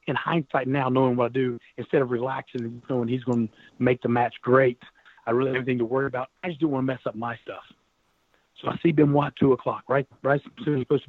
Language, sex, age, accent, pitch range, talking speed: English, male, 40-59, American, 120-145 Hz, 265 wpm